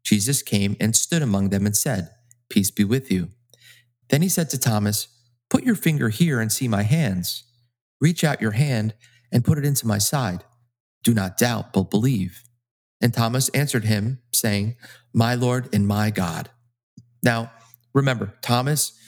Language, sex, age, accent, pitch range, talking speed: English, male, 30-49, American, 110-130 Hz, 165 wpm